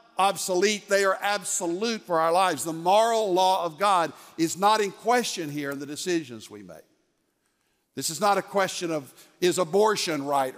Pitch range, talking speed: 155-200 Hz, 175 wpm